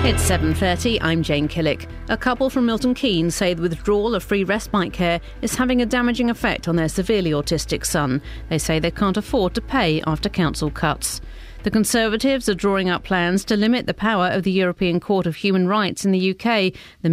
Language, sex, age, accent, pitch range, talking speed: English, female, 40-59, British, 165-210 Hz, 205 wpm